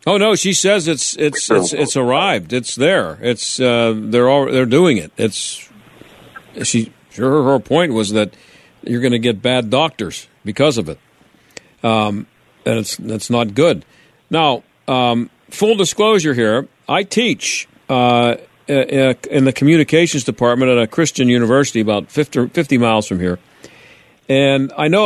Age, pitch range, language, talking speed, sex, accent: 50-69, 120-150 Hz, English, 155 wpm, male, American